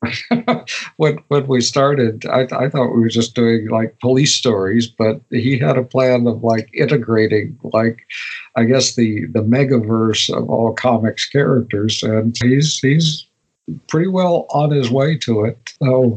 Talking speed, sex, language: 165 wpm, male, English